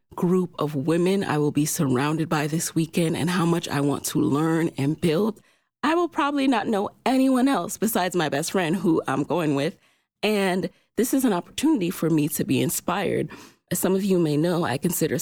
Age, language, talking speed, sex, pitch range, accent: 30-49, English, 205 wpm, female, 150-195 Hz, American